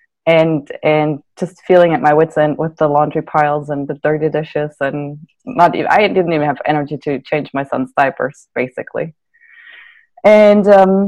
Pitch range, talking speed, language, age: 150-185 Hz, 170 wpm, English, 20-39